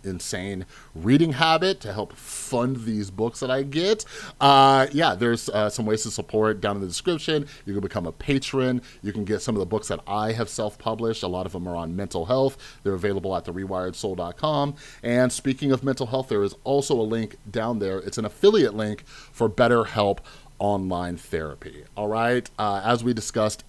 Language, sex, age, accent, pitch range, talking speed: English, male, 30-49, American, 100-125 Hz, 195 wpm